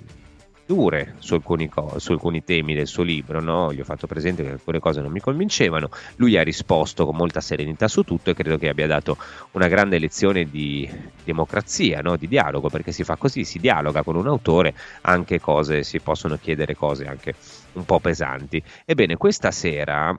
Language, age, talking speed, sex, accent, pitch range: Italian, 30-49, 190 wpm, male, native, 75-90 Hz